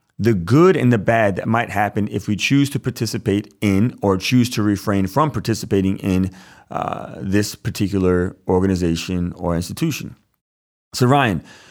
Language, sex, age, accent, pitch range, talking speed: English, male, 30-49, American, 95-115 Hz, 150 wpm